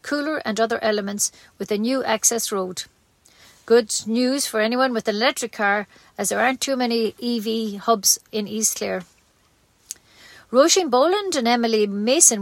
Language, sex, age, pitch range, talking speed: English, female, 50-69, 215-265 Hz, 155 wpm